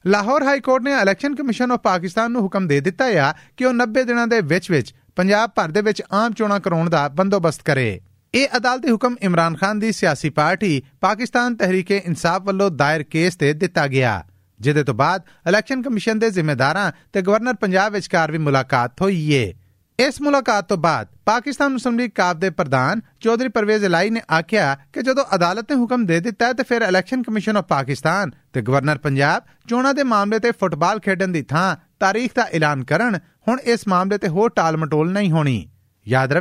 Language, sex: Punjabi, male